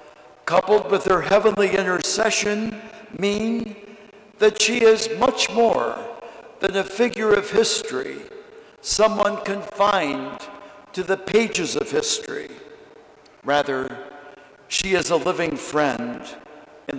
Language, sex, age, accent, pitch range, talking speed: English, male, 60-79, American, 165-220 Hz, 105 wpm